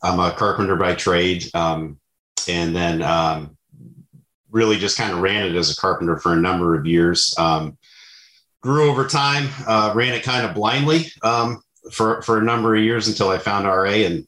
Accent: American